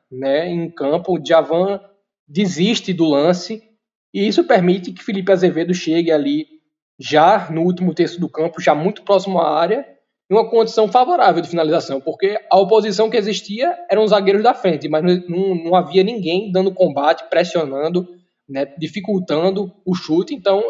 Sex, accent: male, Brazilian